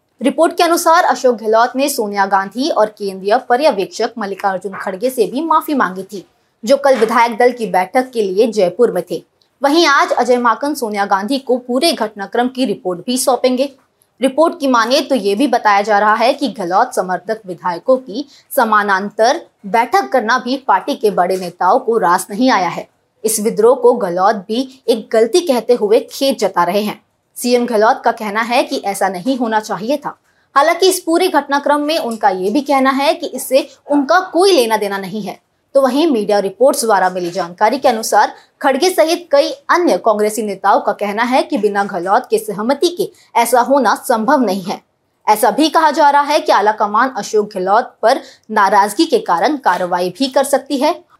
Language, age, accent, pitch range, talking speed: Hindi, 20-39, native, 205-285 Hz, 160 wpm